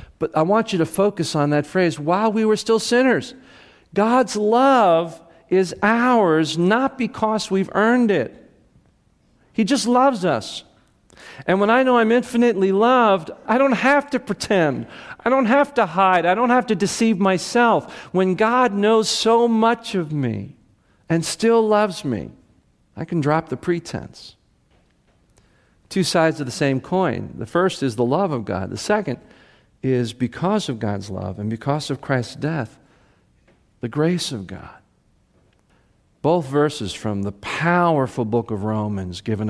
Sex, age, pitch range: male, 50-69, 120-195 Hz